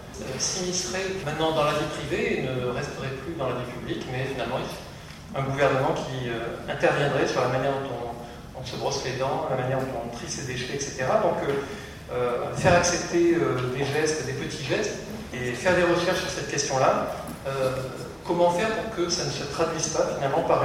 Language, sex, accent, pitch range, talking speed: French, male, French, 130-175 Hz, 205 wpm